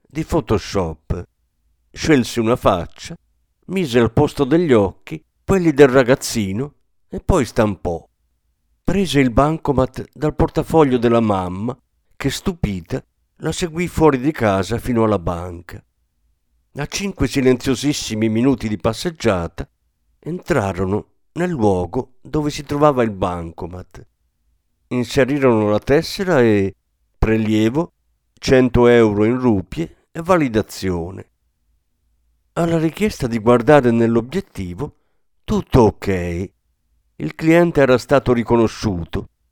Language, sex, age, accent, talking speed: Italian, male, 50-69, native, 105 wpm